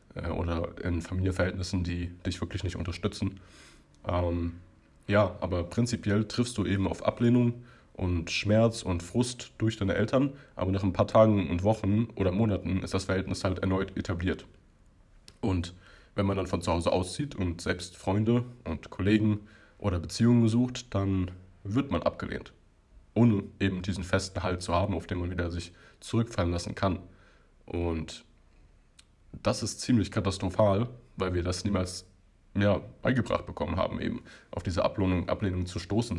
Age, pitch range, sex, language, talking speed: 20-39, 90-105 Hz, male, German, 160 wpm